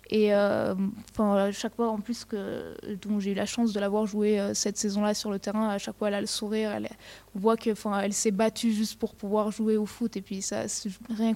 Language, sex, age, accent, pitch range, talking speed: French, female, 20-39, French, 205-235 Hz, 245 wpm